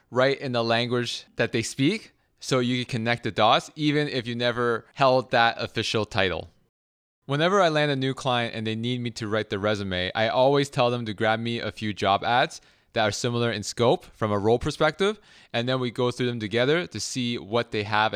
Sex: male